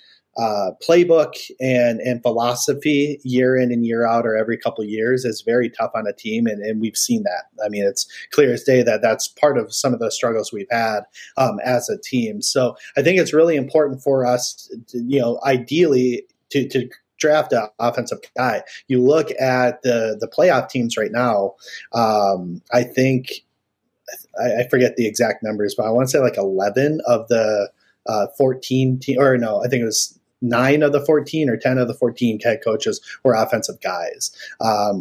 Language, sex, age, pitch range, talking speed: English, male, 30-49, 115-145 Hz, 195 wpm